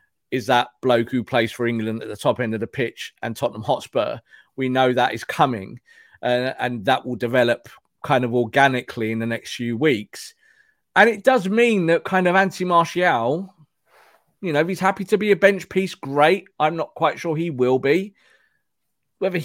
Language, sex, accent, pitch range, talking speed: English, male, British, 125-185 Hz, 190 wpm